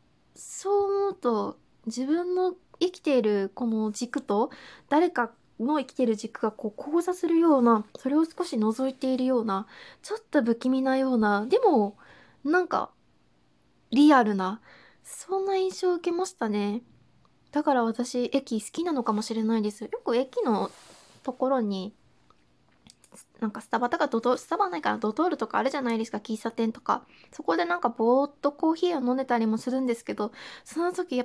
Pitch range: 225-290 Hz